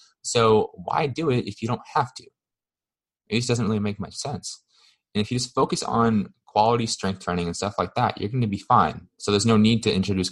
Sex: male